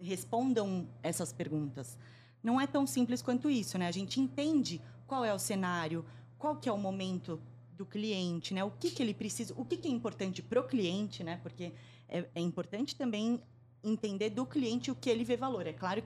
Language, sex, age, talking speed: Portuguese, female, 20-39, 200 wpm